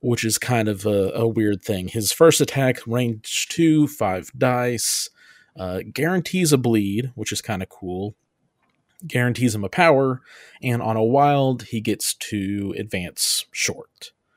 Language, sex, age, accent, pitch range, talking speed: English, male, 30-49, American, 105-130 Hz, 155 wpm